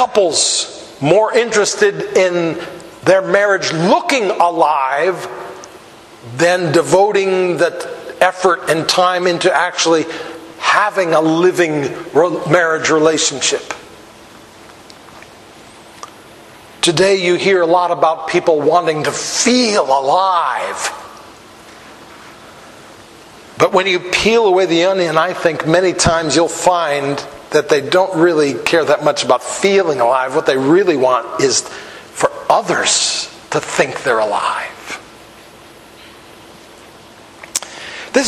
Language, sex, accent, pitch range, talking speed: English, male, American, 165-205 Hz, 105 wpm